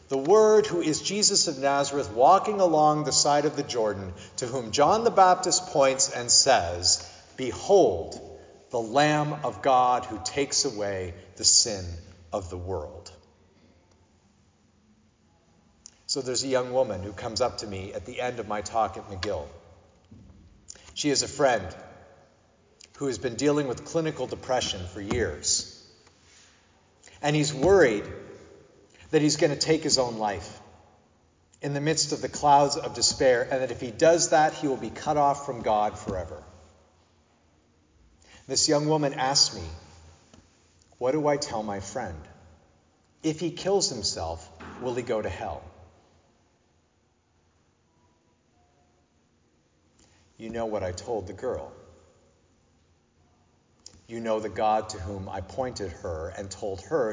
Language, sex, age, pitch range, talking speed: English, male, 40-59, 90-140 Hz, 145 wpm